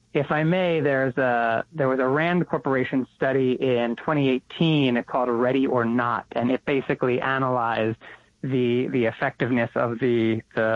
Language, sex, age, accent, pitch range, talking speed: English, male, 30-49, American, 130-160 Hz, 160 wpm